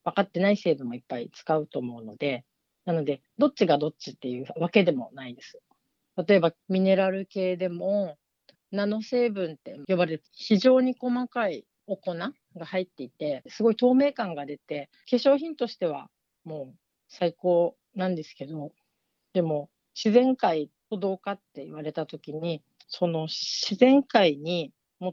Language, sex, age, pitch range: Japanese, female, 40-59, 160-205 Hz